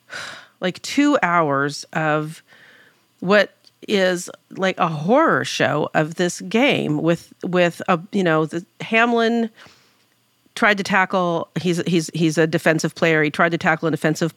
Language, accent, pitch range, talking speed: English, American, 145-170 Hz, 145 wpm